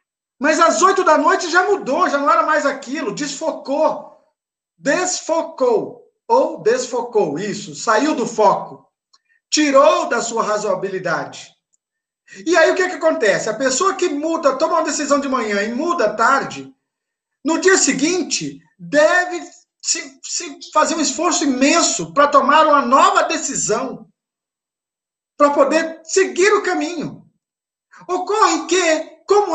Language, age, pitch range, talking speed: Portuguese, 50-69, 255-345 Hz, 135 wpm